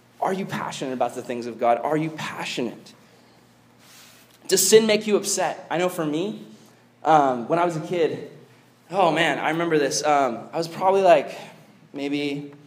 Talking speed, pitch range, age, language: 175 wpm, 125-155 Hz, 20-39, English